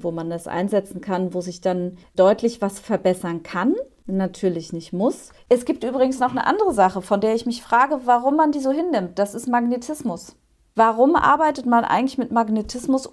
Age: 30-49